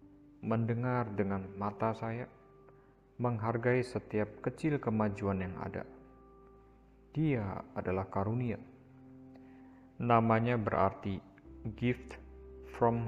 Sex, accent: male, native